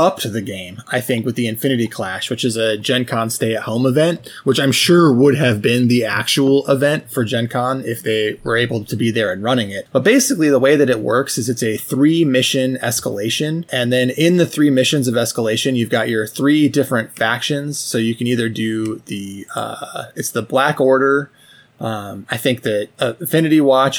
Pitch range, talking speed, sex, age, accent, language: 115-140 Hz, 215 wpm, male, 20-39, American, English